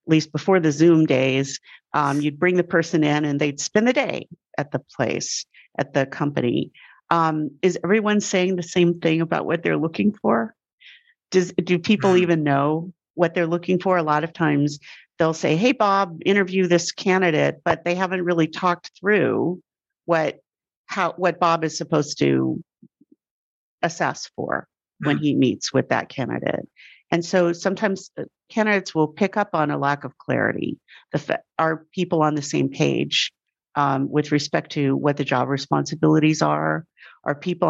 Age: 50-69